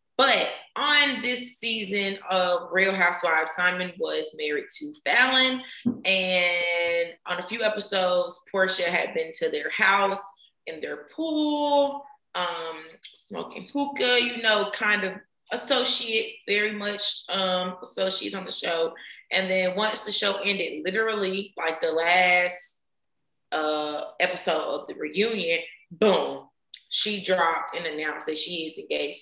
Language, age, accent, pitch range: English, 20-39, American, 180-245 Hz